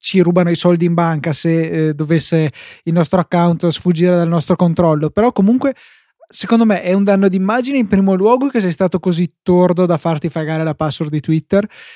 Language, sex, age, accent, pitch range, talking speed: Italian, male, 20-39, native, 165-195 Hz, 195 wpm